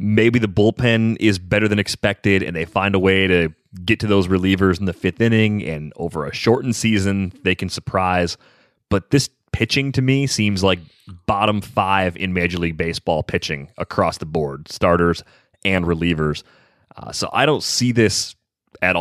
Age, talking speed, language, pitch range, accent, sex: 30-49, 175 wpm, English, 90-110 Hz, American, male